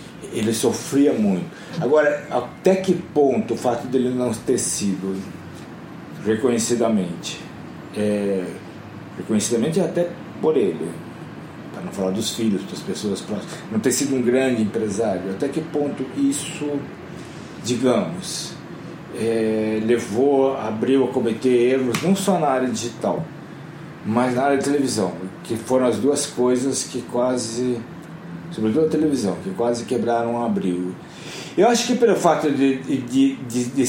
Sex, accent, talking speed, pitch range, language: male, Brazilian, 135 wpm, 115-150 Hz, Portuguese